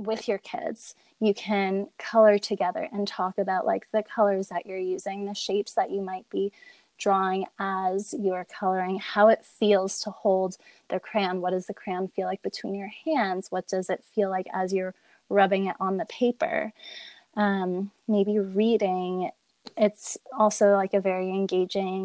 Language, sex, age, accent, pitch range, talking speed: English, female, 20-39, American, 190-210 Hz, 170 wpm